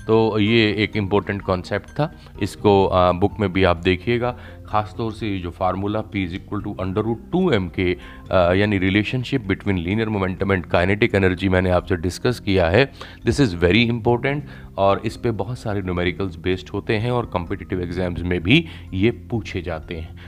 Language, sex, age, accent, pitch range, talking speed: Hindi, male, 30-49, native, 90-105 Hz, 180 wpm